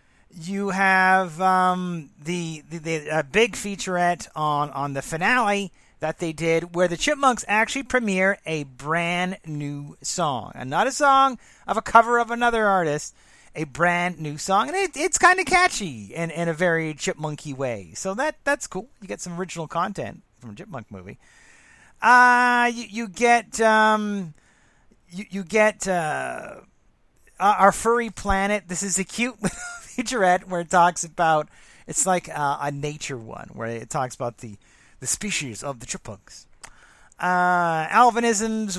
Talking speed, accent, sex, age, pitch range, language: 160 wpm, American, male, 40-59, 160-225 Hz, English